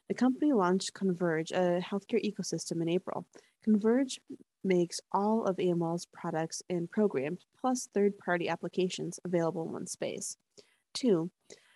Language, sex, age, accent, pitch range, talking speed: English, female, 20-39, American, 170-200 Hz, 130 wpm